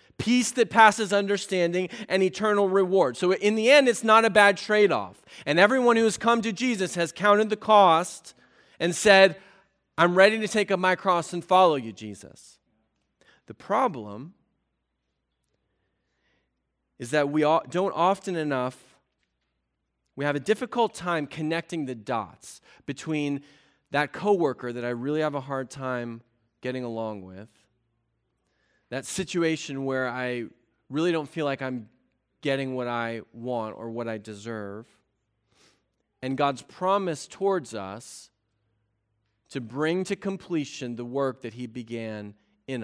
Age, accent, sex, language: 30-49, American, male, English